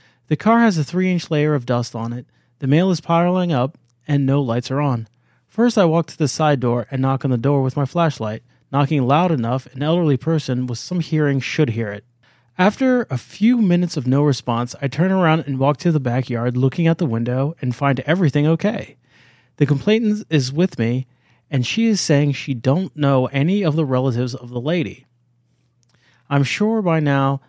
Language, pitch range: English, 125-155 Hz